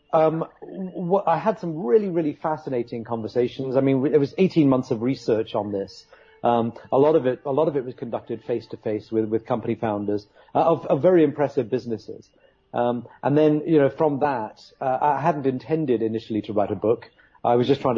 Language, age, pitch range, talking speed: English, 40-59, 120-160 Hz, 210 wpm